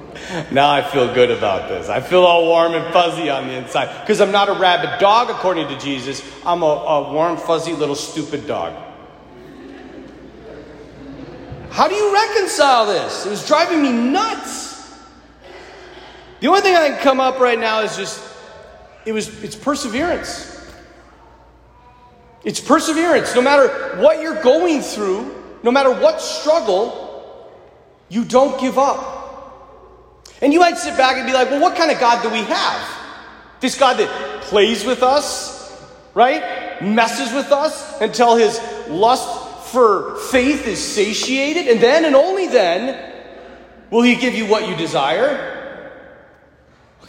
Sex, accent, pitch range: male, American, 210-300 Hz